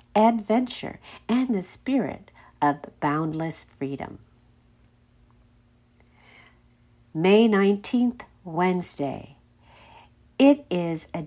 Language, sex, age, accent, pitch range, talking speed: English, female, 60-79, American, 150-230 Hz, 70 wpm